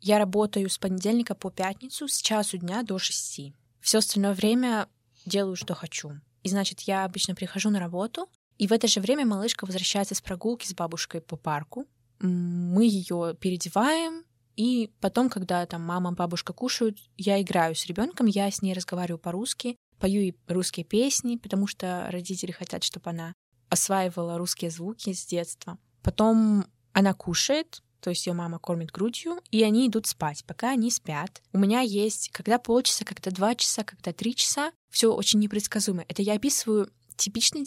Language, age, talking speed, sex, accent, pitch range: Russian, 20-39, 170 wpm, female, native, 175-220 Hz